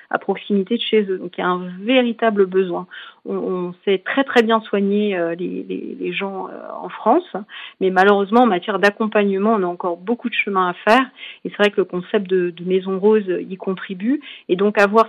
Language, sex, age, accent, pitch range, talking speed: French, female, 40-59, French, 185-220 Hz, 215 wpm